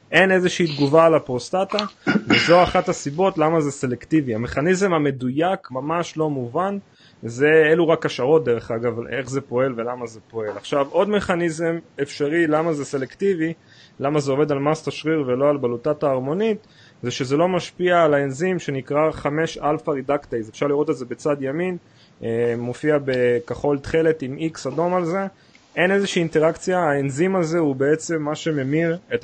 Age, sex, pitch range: 30-49, male, 135-175 Hz